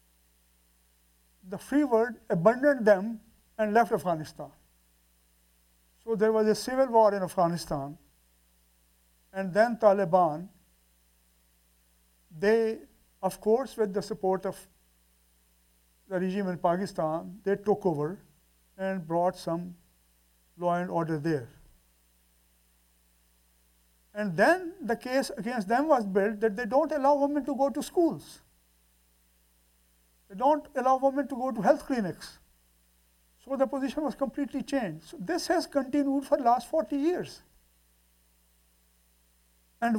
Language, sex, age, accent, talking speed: English, male, 50-69, Indian, 125 wpm